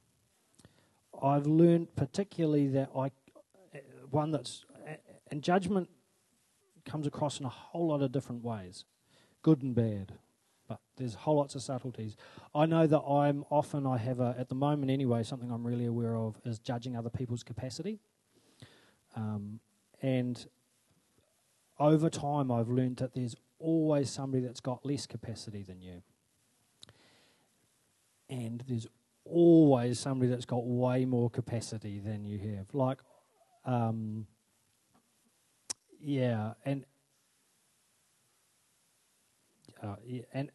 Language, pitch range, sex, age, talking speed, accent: English, 115-140 Hz, male, 30-49, 120 wpm, Australian